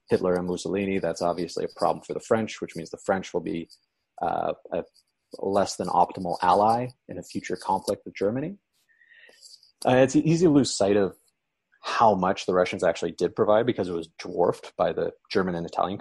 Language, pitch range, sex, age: English, 90-115 Hz, male, 30-49